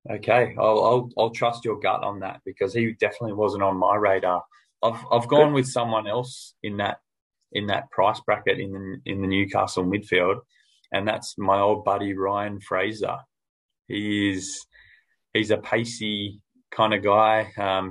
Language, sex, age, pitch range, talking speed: English, male, 20-39, 100-115 Hz, 170 wpm